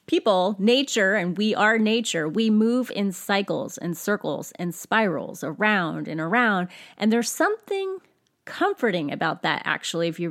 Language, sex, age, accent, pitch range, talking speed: English, female, 30-49, American, 185-265 Hz, 150 wpm